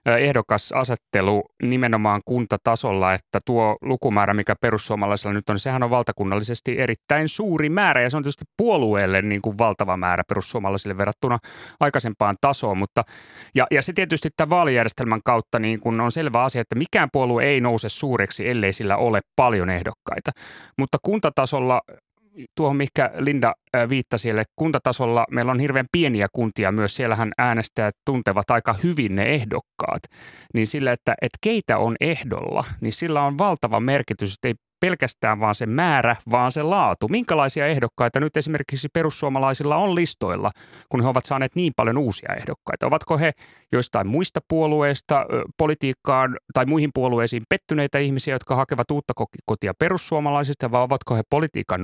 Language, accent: Finnish, native